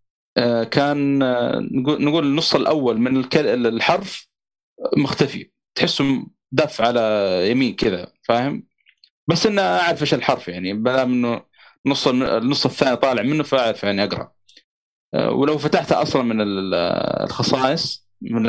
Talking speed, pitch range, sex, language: 115 wpm, 110-135 Hz, male, Arabic